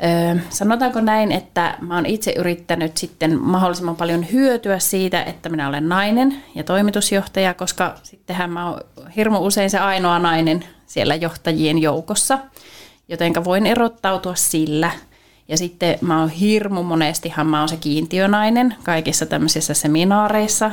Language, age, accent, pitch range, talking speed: Finnish, 30-49, native, 160-195 Hz, 140 wpm